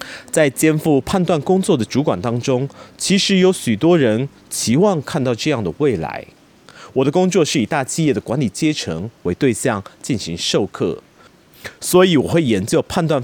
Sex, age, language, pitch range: male, 30-49, Chinese, 125-175 Hz